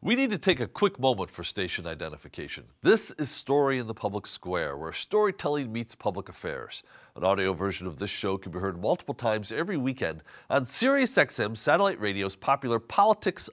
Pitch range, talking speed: 105-145 Hz, 185 wpm